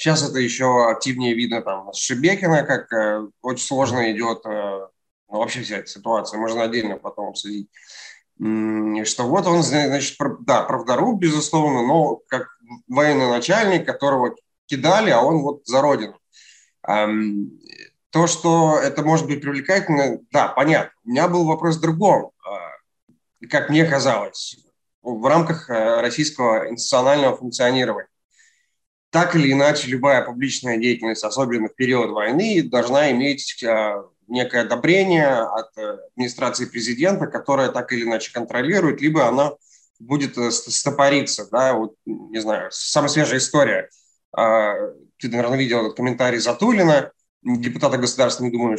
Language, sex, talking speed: Russian, male, 130 wpm